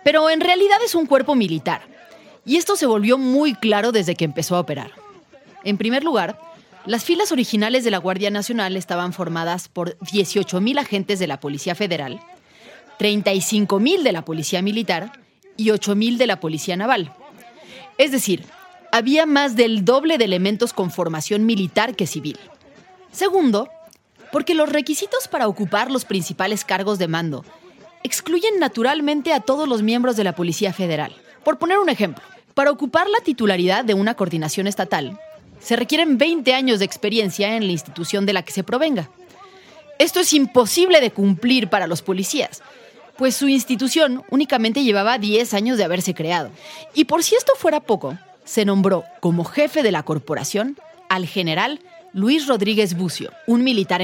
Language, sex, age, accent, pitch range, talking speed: Spanish, female, 30-49, Mexican, 190-290 Hz, 160 wpm